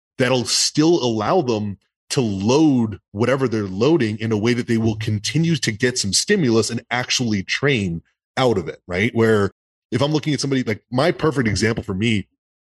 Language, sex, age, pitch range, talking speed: English, male, 20-39, 100-125 Hz, 185 wpm